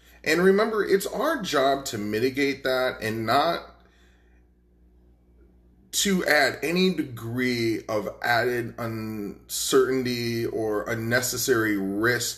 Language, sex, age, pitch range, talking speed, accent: English, male, 30-49, 90-145 Hz, 95 wpm, American